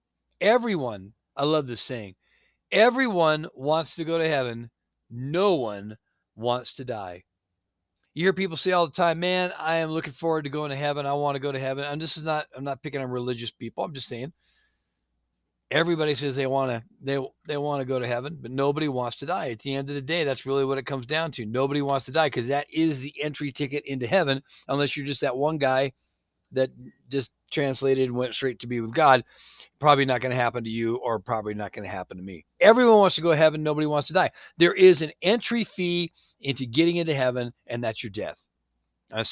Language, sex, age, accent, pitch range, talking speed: English, male, 40-59, American, 120-165 Hz, 225 wpm